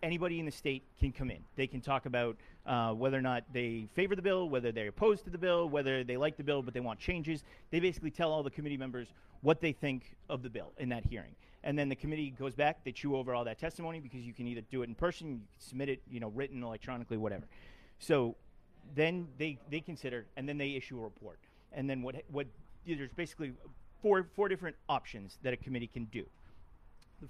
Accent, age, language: American, 40-59, English